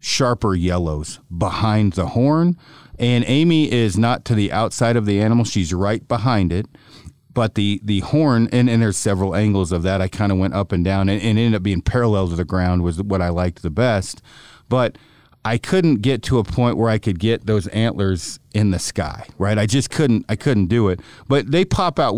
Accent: American